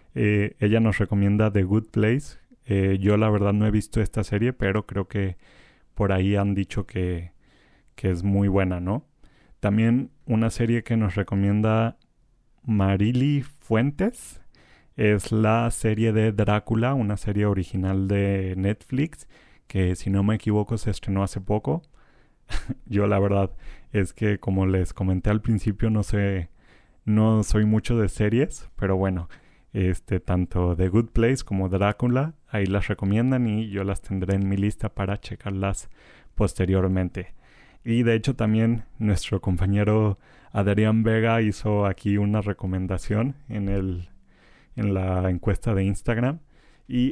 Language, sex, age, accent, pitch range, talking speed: Spanish, male, 30-49, Mexican, 95-110 Hz, 145 wpm